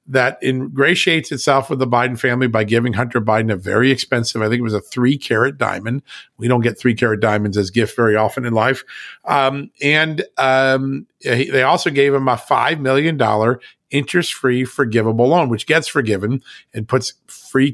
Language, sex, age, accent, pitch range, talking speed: English, male, 50-69, American, 120-145 Hz, 175 wpm